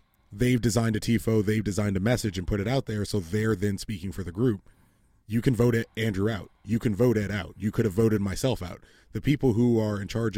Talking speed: 250 wpm